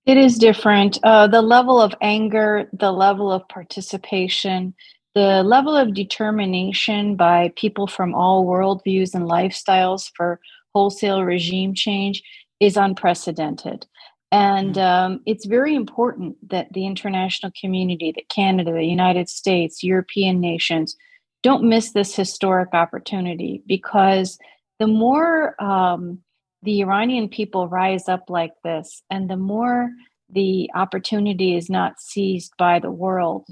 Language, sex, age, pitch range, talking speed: English, female, 40-59, 180-210 Hz, 125 wpm